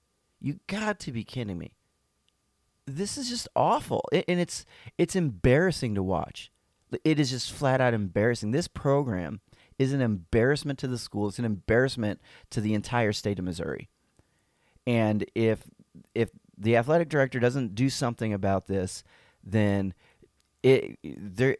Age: 30-49